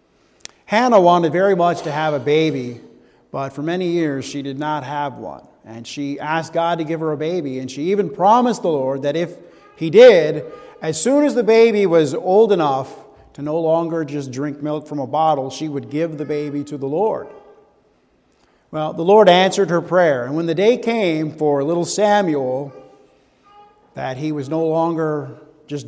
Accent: American